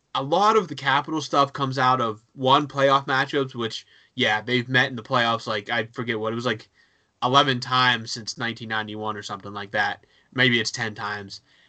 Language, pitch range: English, 120-150 Hz